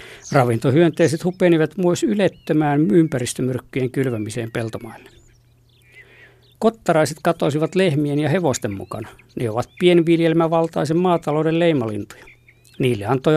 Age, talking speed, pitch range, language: 60-79, 90 wpm, 125-165 Hz, Finnish